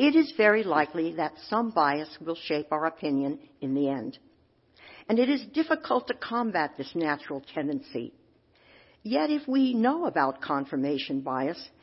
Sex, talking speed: female, 150 wpm